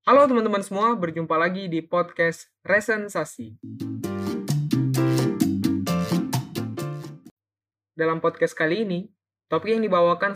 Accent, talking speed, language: native, 85 wpm, Indonesian